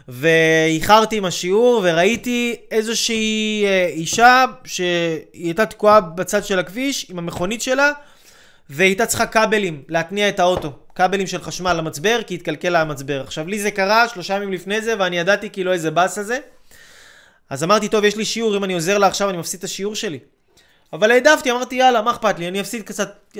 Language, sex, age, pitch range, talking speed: Hebrew, male, 20-39, 170-220 Hz, 175 wpm